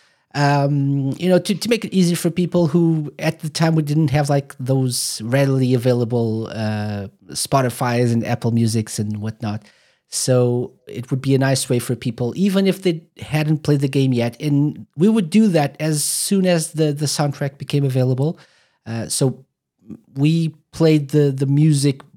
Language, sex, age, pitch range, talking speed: English, male, 40-59, 120-155 Hz, 175 wpm